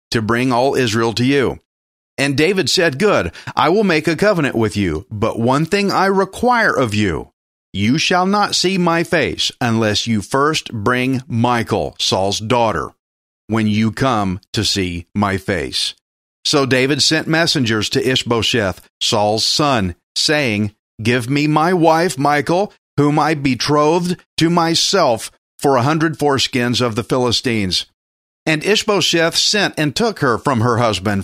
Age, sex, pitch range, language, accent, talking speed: 40-59, male, 105-155 Hz, English, American, 150 wpm